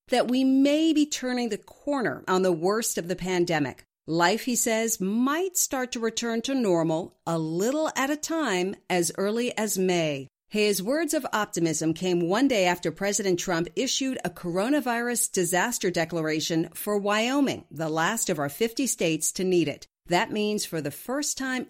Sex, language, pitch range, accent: female, English, 175-260 Hz, American